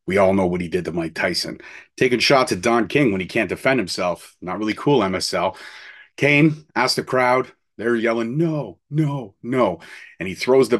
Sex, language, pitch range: male, English, 100-125 Hz